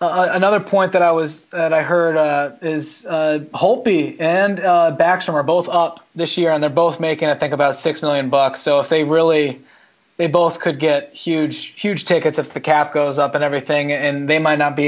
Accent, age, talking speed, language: American, 20-39, 220 wpm, English